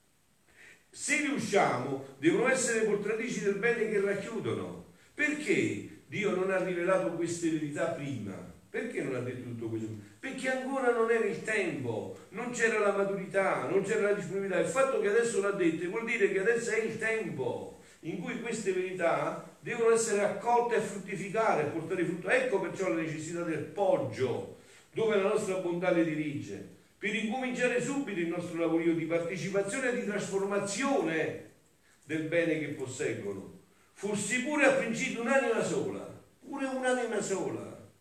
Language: Italian